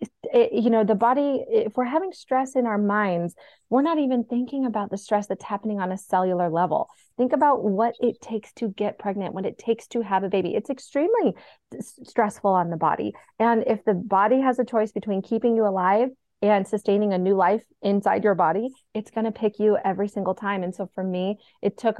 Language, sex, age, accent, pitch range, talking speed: English, female, 30-49, American, 195-230 Hz, 215 wpm